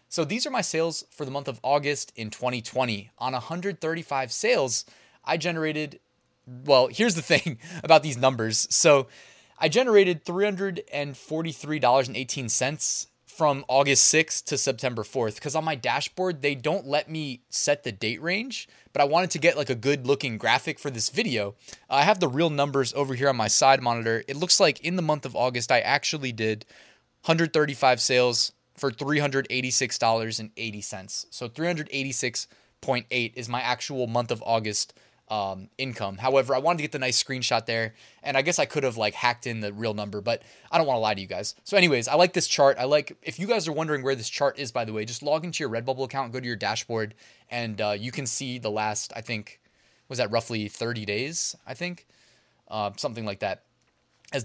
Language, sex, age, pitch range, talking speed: English, male, 20-39, 115-150 Hz, 195 wpm